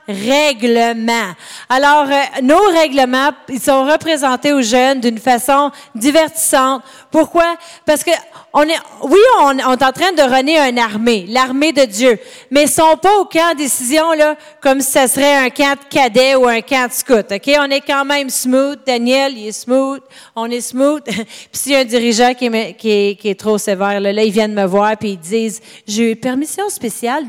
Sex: female